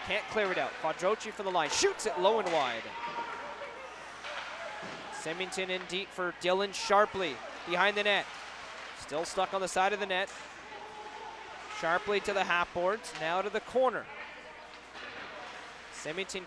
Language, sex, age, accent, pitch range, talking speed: English, male, 20-39, American, 170-210 Hz, 145 wpm